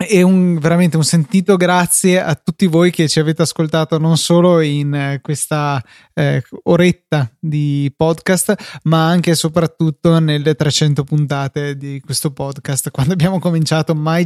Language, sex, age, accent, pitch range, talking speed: Italian, male, 20-39, native, 145-170 Hz, 145 wpm